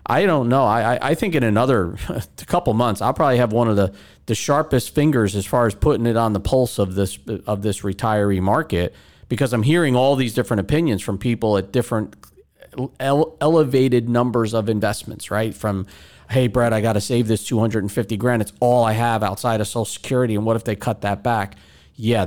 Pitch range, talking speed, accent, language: 100-125 Hz, 205 wpm, American, English